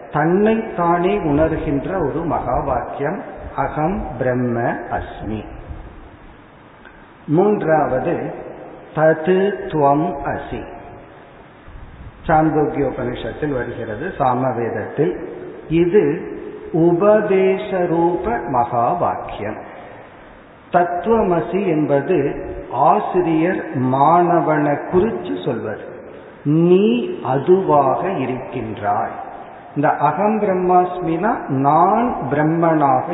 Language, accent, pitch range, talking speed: Tamil, native, 140-175 Hz, 65 wpm